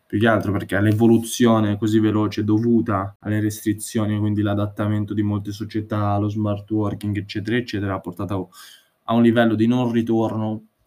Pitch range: 105-115 Hz